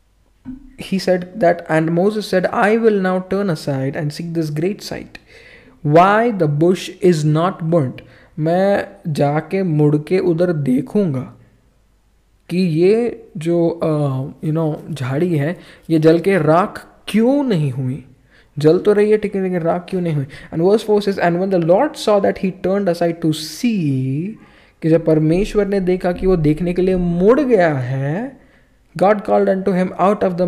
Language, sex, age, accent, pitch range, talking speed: English, male, 20-39, Indian, 150-185 Hz, 135 wpm